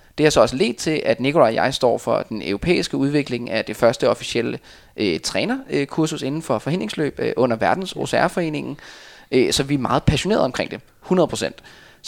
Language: Danish